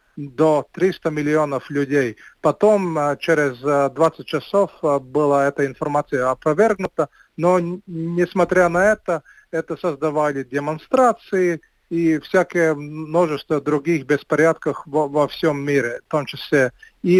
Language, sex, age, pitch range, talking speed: Russian, male, 40-59, 150-175 Hz, 110 wpm